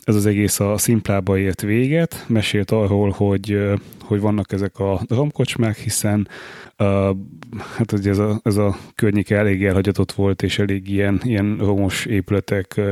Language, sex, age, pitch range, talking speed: Hungarian, male, 30-49, 100-115 Hz, 150 wpm